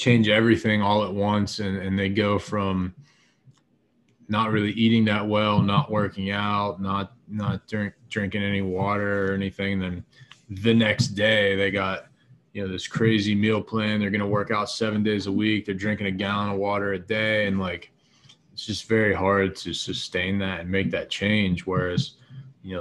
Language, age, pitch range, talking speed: English, 20-39, 95-110 Hz, 185 wpm